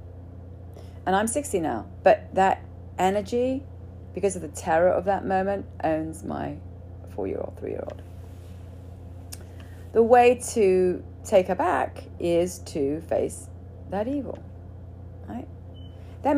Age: 40-59